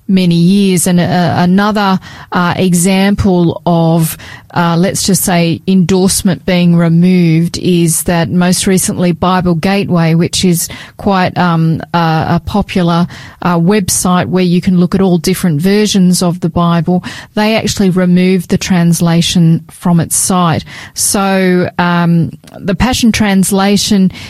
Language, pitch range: English, 170-190 Hz